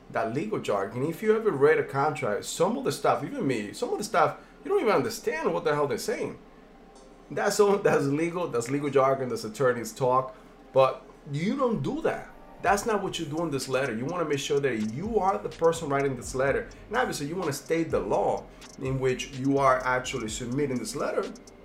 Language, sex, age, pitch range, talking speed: English, male, 30-49, 120-200 Hz, 220 wpm